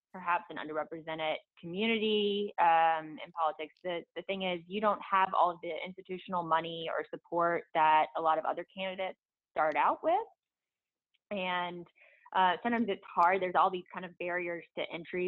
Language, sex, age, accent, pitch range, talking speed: English, female, 20-39, American, 160-195 Hz, 170 wpm